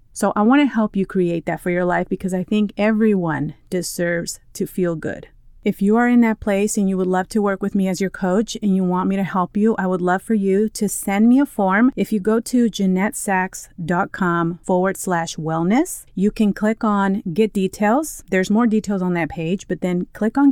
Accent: American